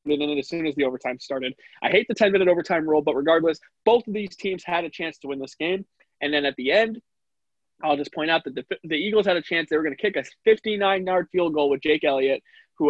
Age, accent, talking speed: 20-39, American, 270 wpm